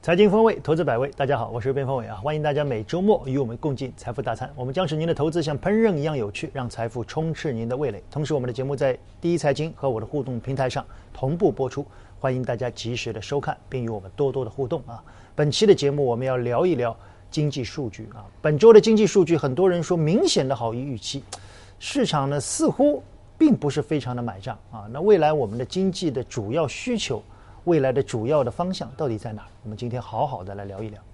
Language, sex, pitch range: Chinese, male, 115-165 Hz